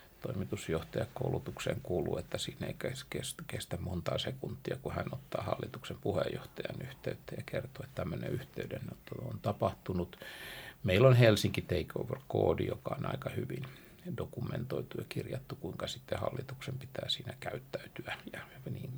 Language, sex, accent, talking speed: Finnish, male, native, 130 wpm